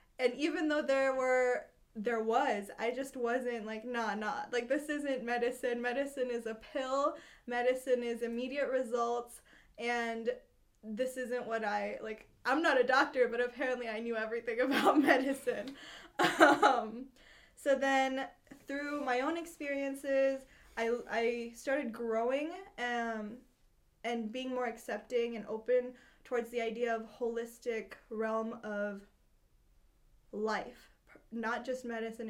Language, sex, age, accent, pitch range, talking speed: English, female, 10-29, American, 230-260 Hz, 130 wpm